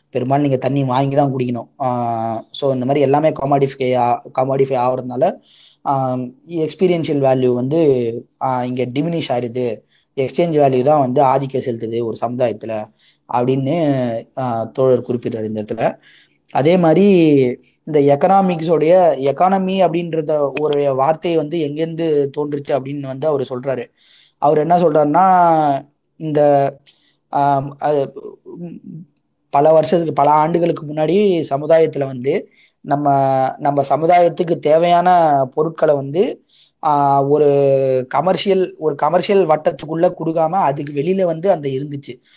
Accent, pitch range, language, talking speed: native, 125-160 Hz, Tamil, 110 wpm